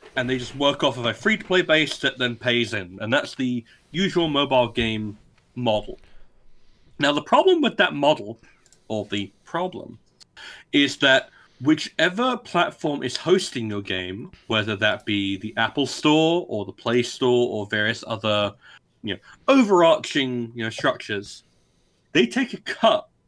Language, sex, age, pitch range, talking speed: English, male, 30-49, 115-160 Hz, 155 wpm